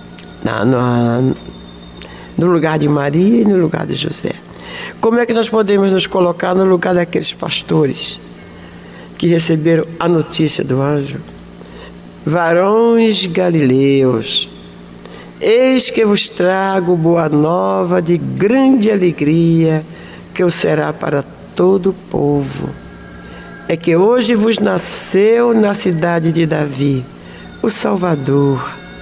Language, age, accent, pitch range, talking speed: Portuguese, 60-79, Brazilian, 140-220 Hz, 115 wpm